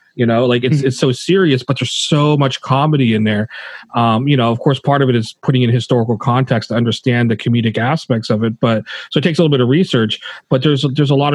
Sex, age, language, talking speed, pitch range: male, 30-49, English, 260 wpm, 115-135 Hz